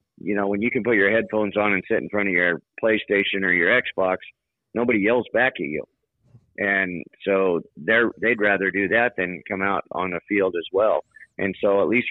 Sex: male